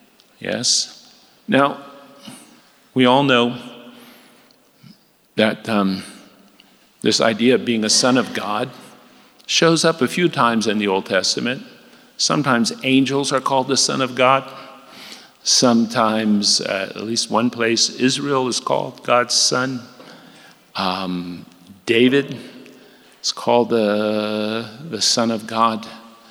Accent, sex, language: American, male, English